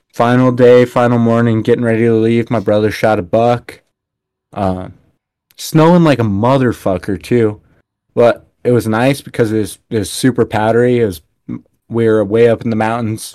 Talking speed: 175 wpm